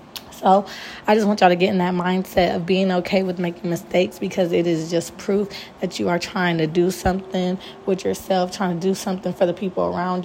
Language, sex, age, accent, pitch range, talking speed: English, female, 20-39, American, 180-205 Hz, 225 wpm